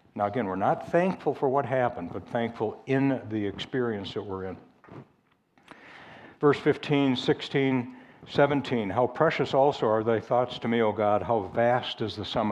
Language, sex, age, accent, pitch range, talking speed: English, male, 60-79, American, 110-135 Hz, 170 wpm